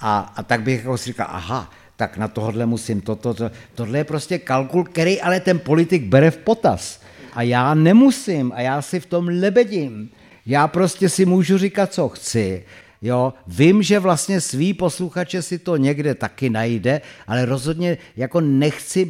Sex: male